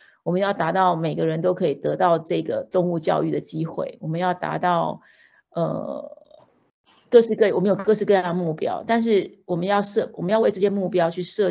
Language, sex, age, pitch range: Chinese, female, 30-49, 170-205 Hz